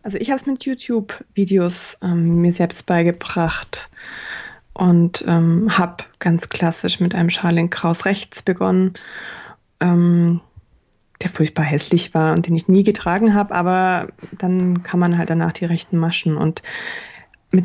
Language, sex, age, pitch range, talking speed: German, female, 20-39, 170-200 Hz, 145 wpm